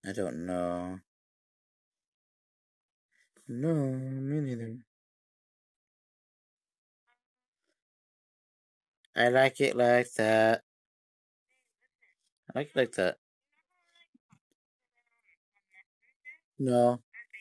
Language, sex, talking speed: English, male, 60 wpm